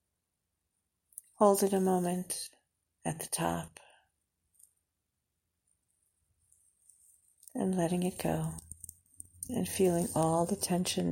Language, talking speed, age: English, 85 wpm, 50-69